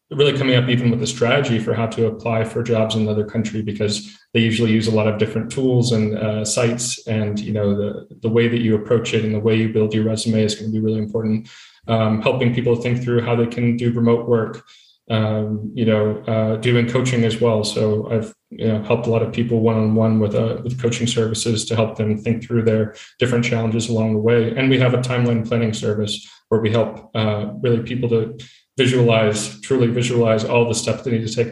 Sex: male